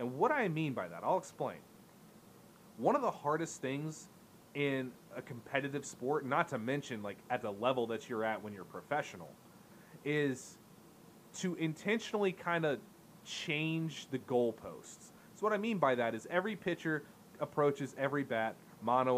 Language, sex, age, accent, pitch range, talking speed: English, male, 30-49, American, 125-170 Hz, 160 wpm